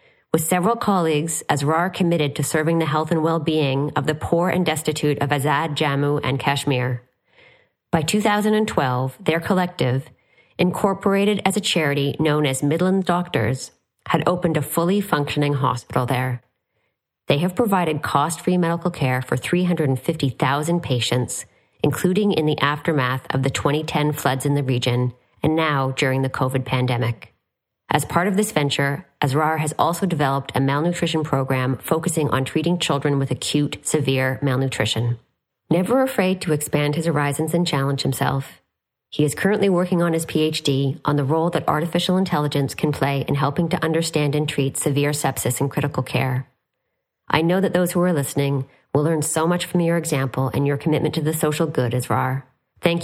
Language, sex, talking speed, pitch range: English, female, 165 wpm, 135-170 Hz